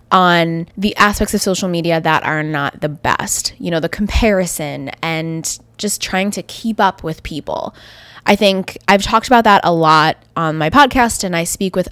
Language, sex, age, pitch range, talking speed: English, female, 20-39, 165-215 Hz, 190 wpm